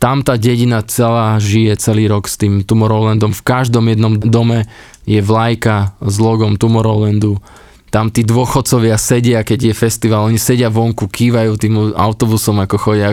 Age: 20-39